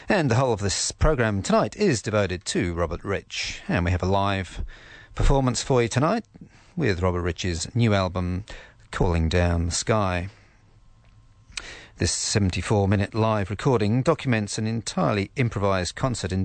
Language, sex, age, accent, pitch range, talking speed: English, male, 40-59, British, 95-115 Hz, 145 wpm